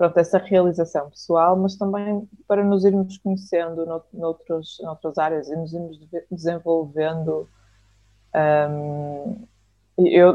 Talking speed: 110 wpm